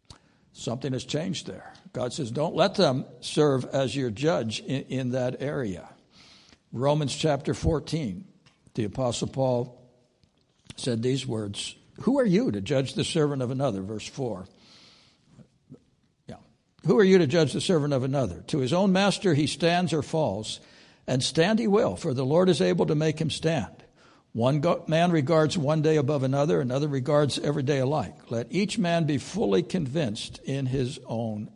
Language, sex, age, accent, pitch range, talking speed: English, male, 60-79, American, 125-160 Hz, 165 wpm